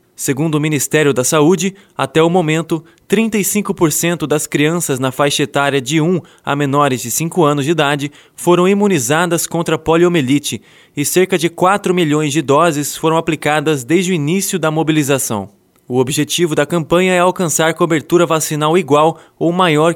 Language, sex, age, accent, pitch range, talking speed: Portuguese, male, 20-39, Brazilian, 145-175 Hz, 155 wpm